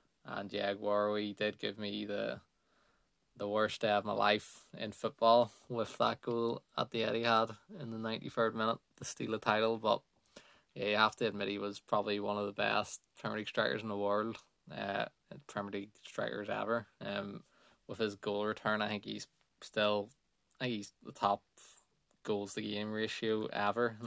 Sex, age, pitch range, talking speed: male, 20-39, 100-110 Hz, 185 wpm